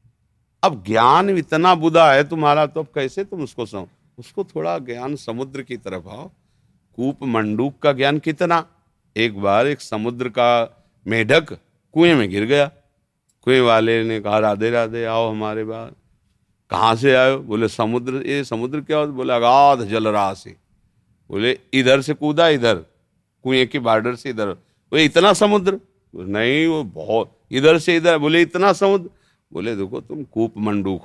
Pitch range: 110-160 Hz